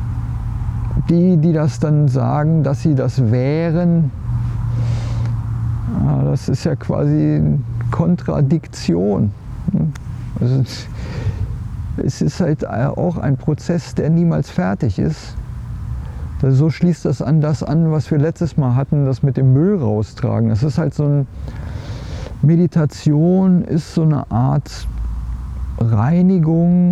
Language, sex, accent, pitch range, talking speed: German, male, German, 115-160 Hz, 115 wpm